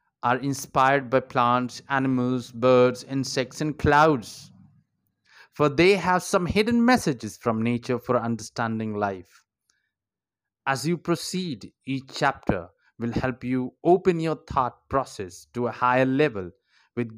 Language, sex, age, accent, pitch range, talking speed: Hindi, male, 20-39, native, 105-140 Hz, 130 wpm